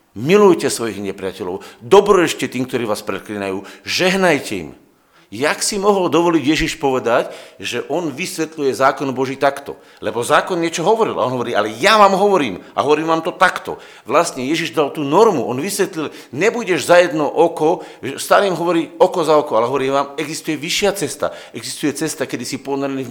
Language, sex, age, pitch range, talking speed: Slovak, male, 50-69, 105-165 Hz, 170 wpm